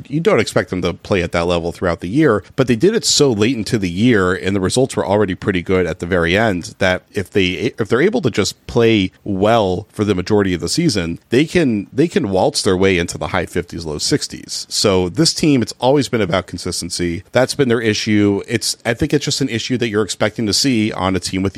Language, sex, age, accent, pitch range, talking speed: English, male, 40-59, American, 90-115 Hz, 255 wpm